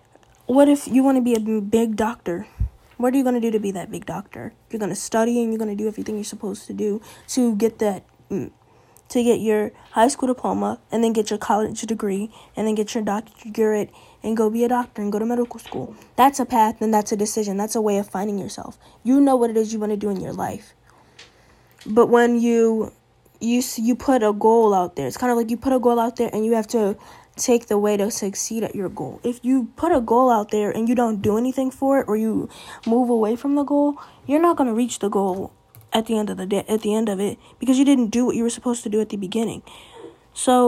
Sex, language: female, English